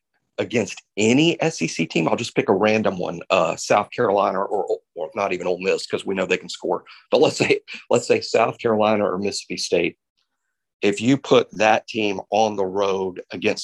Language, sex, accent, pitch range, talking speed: English, male, American, 105-125 Hz, 195 wpm